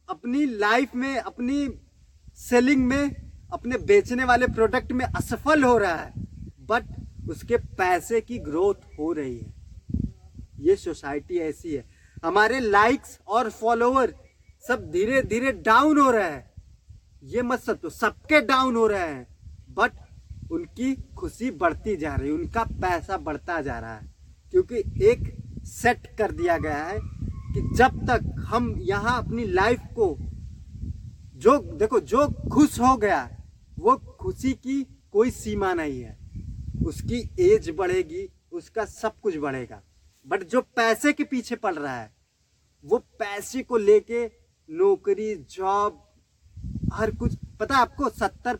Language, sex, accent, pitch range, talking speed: Hindi, male, native, 175-280 Hz, 140 wpm